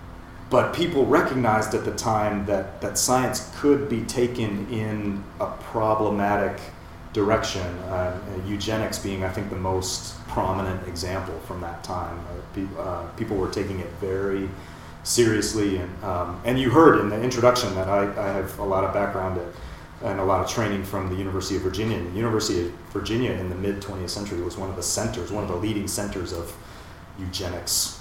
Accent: American